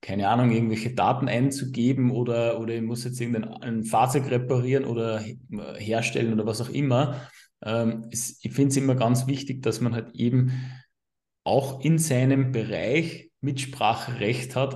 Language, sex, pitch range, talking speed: German, male, 115-130 Hz, 150 wpm